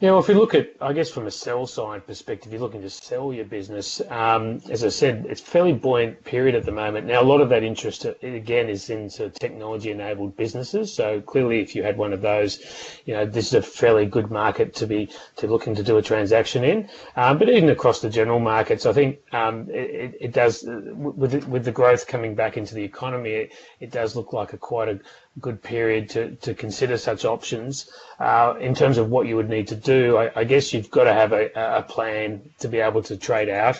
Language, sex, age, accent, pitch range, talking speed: English, male, 30-49, Australian, 110-125 Hz, 240 wpm